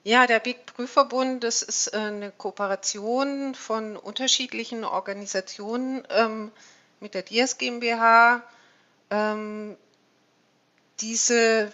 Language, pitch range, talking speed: German, 185-225 Hz, 85 wpm